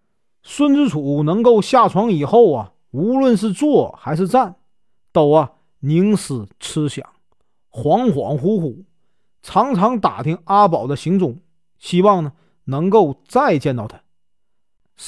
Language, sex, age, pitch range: Chinese, male, 40-59, 135-215 Hz